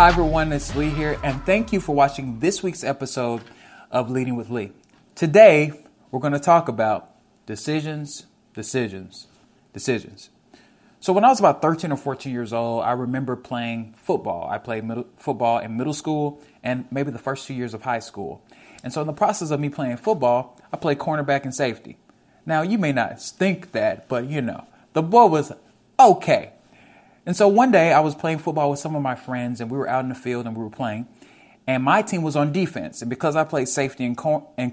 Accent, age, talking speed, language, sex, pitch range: American, 20-39, 210 wpm, English, male, 120-155 Hz